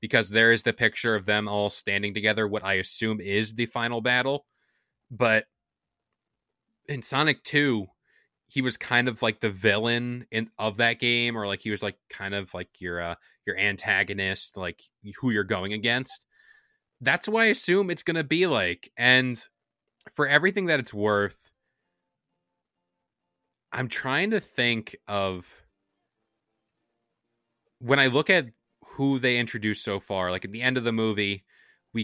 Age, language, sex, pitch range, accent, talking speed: 20-39, English, male, 100-125 Hz, American, 160 wpm